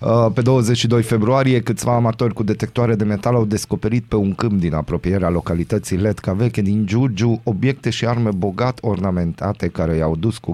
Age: 30-49